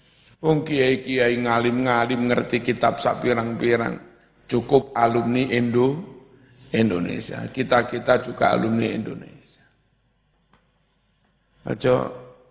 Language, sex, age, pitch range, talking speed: Indonesian, male, 50-69, 120-135 Hz, 75 wpm